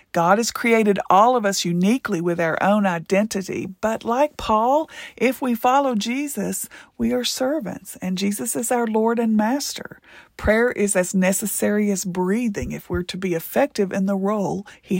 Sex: female